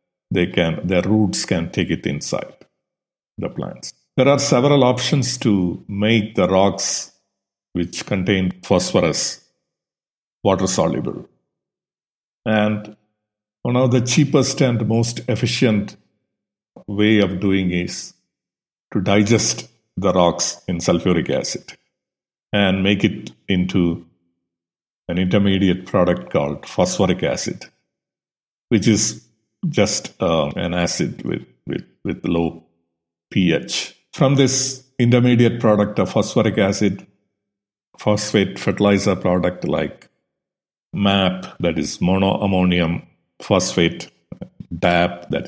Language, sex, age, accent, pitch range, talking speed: English, male, 50-69, Indian, 90-110 Hz, 105 wpm